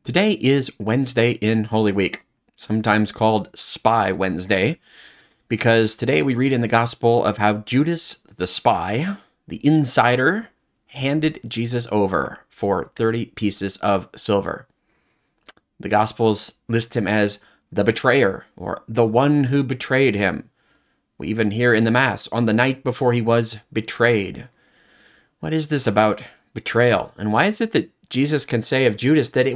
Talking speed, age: 150 wpm, 30-49